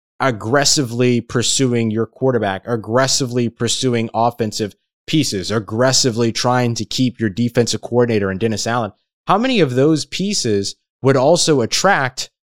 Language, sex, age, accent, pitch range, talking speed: English, male, 20-39, American, 105-145 Hz, 125 wpm